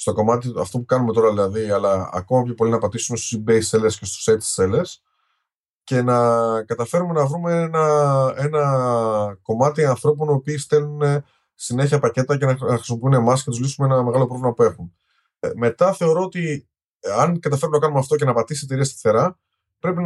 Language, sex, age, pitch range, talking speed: Greek, male, 20-39, 115-155 Hz, 185 wpm